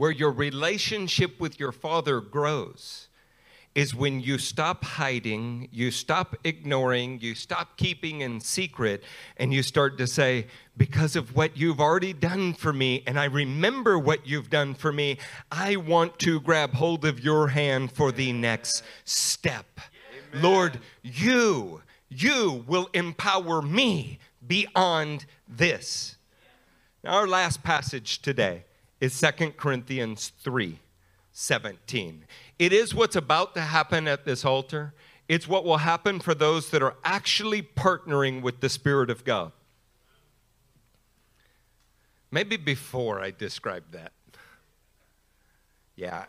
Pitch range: 125-165 Hz